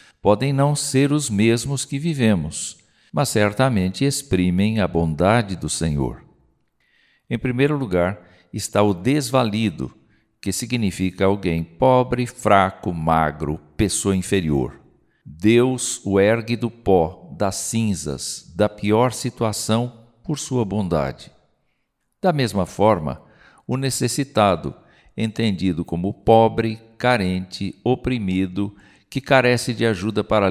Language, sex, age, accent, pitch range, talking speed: Portuguese, male, 60-79, Brazilian, 95-125 Hz, 110 wpm